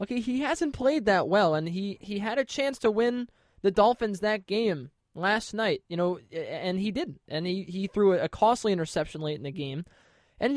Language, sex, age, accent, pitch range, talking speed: English, male, 20-39, American, 165-220 Hz, 210 wpm